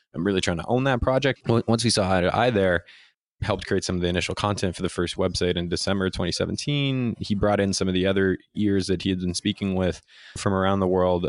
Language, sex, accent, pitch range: English, male, American, 90-110 Hz